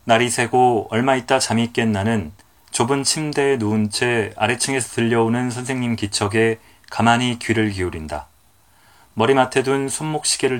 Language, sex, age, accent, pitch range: Korean, male, 30-49, native, 105-125 Hz